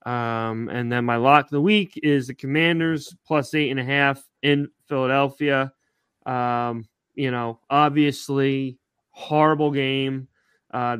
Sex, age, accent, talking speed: male, 20-39, American, 135 wpm